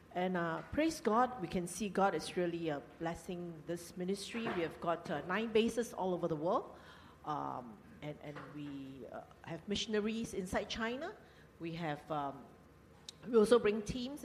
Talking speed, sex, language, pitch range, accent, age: 170 wpm, female, English, 160-205 Hz, Malaysian, 50-69